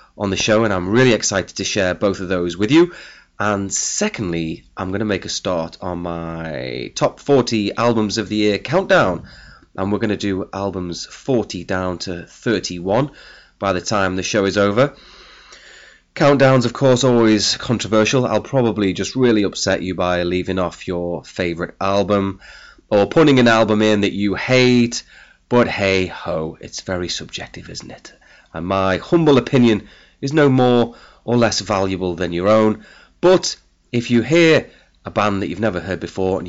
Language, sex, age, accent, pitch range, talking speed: English, male, 30-49, British, 90-120 Hz, 175 wpm